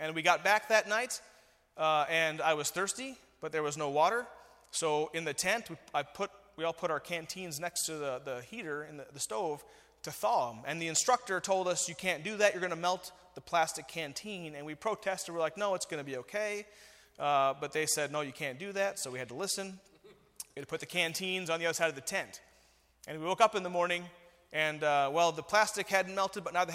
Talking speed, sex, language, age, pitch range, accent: 250 wpm, male, English, 30-49, 150-195 Hz, American